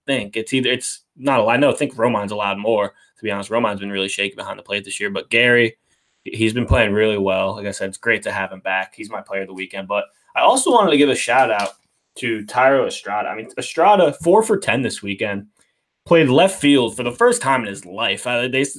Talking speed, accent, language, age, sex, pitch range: 260 wpm, American, English, 20-39, male, 100-125 Hz